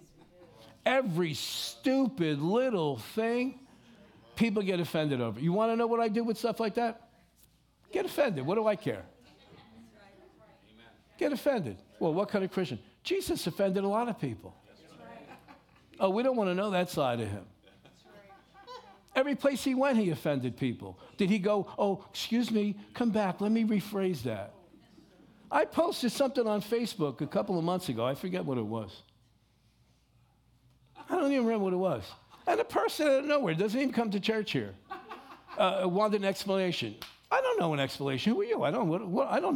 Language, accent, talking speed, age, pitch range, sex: English, American, 175 wpm, 60-79, 150-235 Hz, male